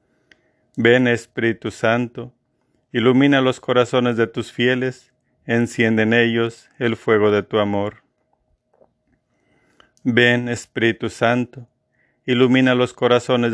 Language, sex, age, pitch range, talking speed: Spanish, male, 50-69, 115-130 Hz, 100 wpm